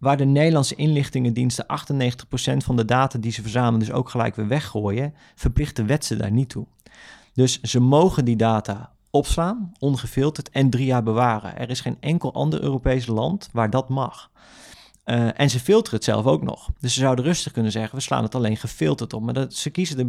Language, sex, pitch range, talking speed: Dutch, male, 115-145 Hz, 205 wpm